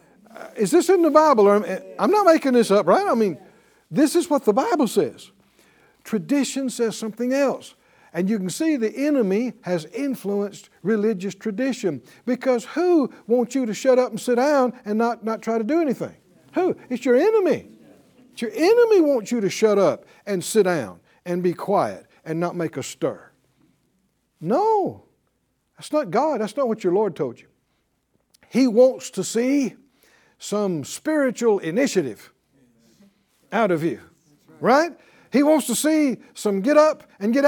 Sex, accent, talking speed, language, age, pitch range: male, American, 170 wpm, English, 60-79, 200-285 Hz